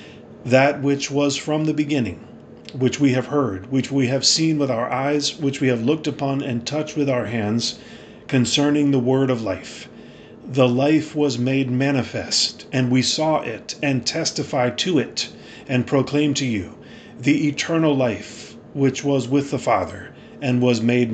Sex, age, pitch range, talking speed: male, 40-59, 125-145 Hz, 170 wpm